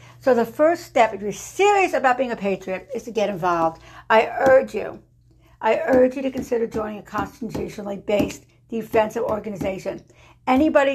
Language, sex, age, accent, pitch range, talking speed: English, female, 60-79, American, 200-235 Hz, 165 wpm